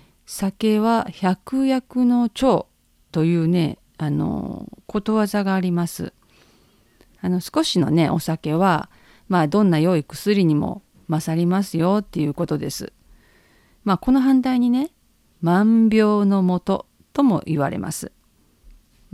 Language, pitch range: Japanese, 165-215 Hz